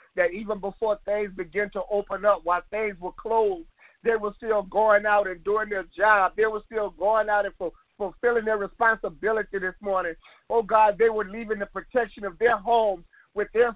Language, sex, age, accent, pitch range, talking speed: English, male, 50-69, American, 210-270 Hz, 190 wpm